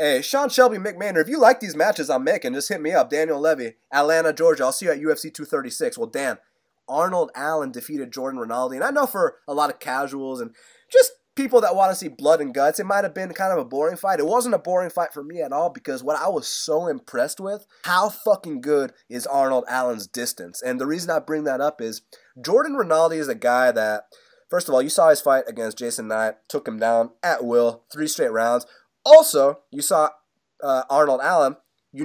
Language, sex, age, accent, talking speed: English, male, 20-39, American, 230 wpm